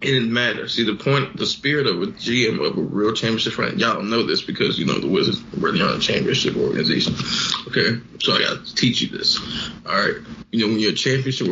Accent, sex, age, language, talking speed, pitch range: American, male, 20-39, English, 240 wpm, 115-155 Hz